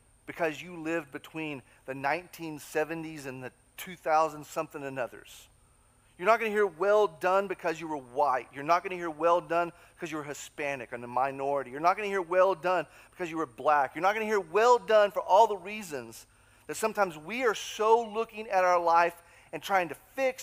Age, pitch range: 40-59, 155-225 Hz